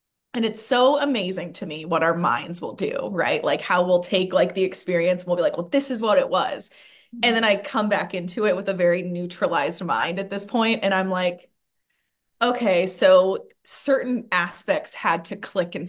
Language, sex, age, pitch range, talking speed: English, female, 20-39, 180-260 Hz, 205 wpm